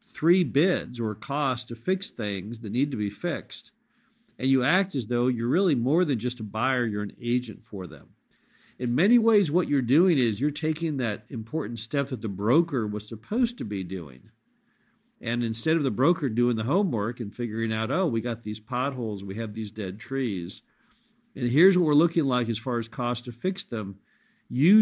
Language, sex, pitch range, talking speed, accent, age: English, male, 115-145 Hz, 205 wpm, American, 50-69